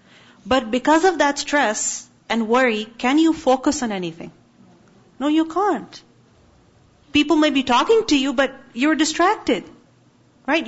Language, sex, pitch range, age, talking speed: English, female, 235-310 Hz, 40-59, 140 wpm